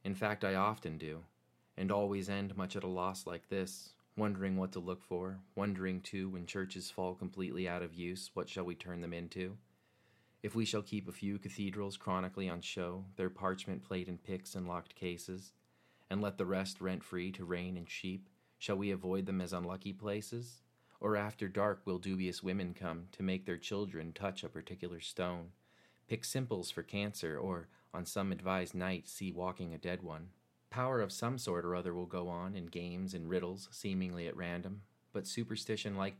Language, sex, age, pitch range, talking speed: English, male, 30-49, 90-100 Hz, 190 wpm